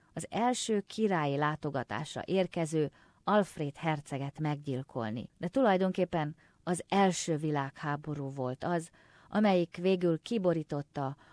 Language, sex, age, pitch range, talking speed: Hungarian, female, 30-49, 145-190 Hz, 95 wpm